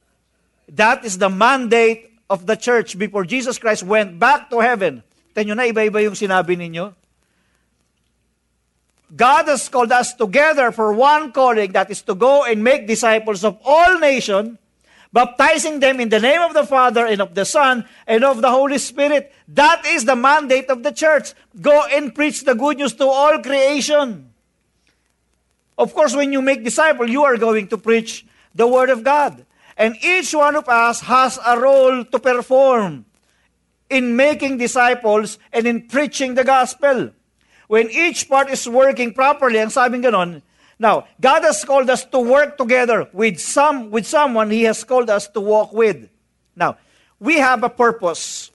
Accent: Filipino